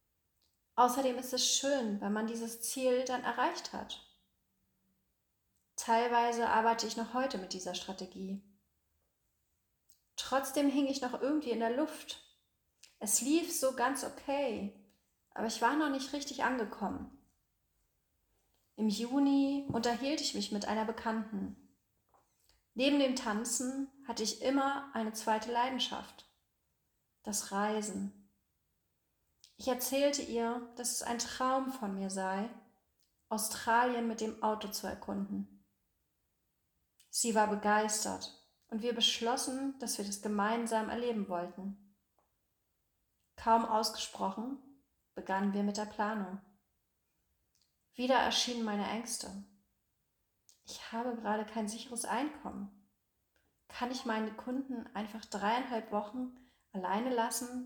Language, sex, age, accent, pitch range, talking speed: German, female, 30-49, German, 190-250 Hz, 115 wpm